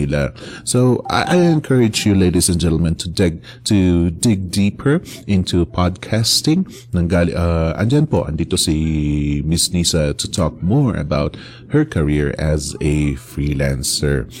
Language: English